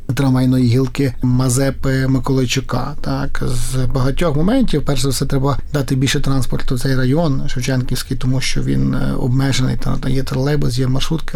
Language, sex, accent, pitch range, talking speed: Ukrainian, male, native, 130-145 Hz, 135 wpm